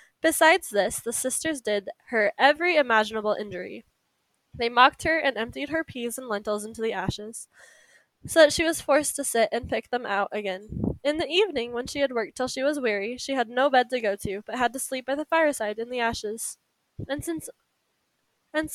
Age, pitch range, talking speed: 10-29, 220-300 Hz, 200 wpm